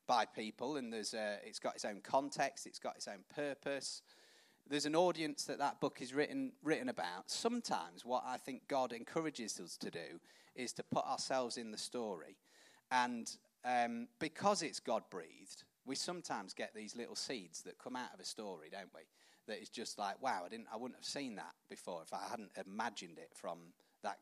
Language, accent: English, British